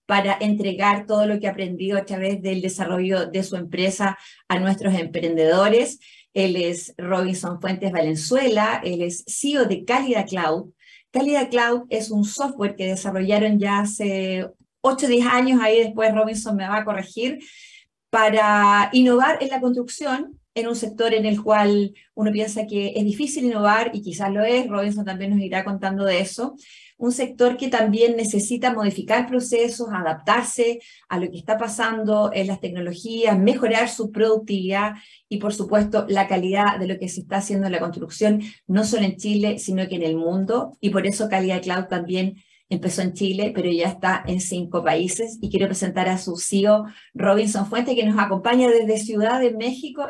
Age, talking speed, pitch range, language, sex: 30-49, 175 wpm, 190-235 Hz, Spanish, female